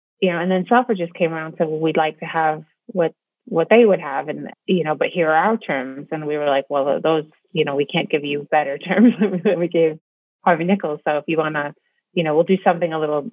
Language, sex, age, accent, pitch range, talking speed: English, female, 30-49, American, 155-180 Hz, 265 wpm